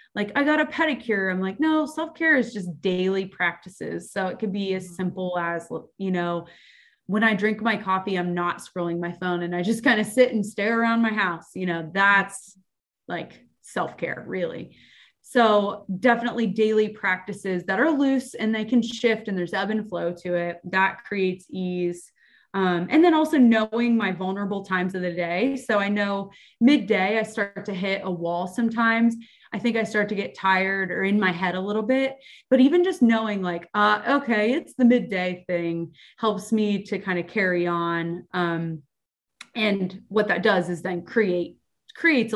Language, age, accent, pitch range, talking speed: English, 20-39, American, 185-235 Hz, 190 wpm